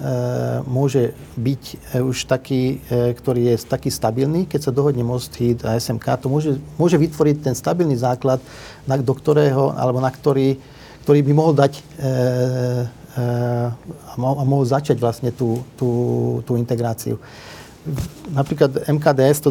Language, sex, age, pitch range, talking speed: Slovak, male, 40-59, 120-140 Hz, 130 wpm